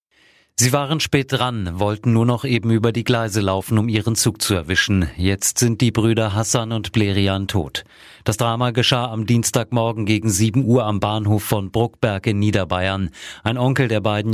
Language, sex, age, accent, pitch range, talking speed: German, male, 40-59, German, 105-125 Hz, 180 wpm